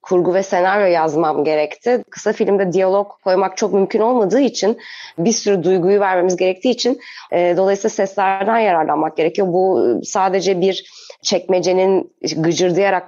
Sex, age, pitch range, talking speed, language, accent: female, 30-49, 185-230 Hz, 135 wpm, Turkish, native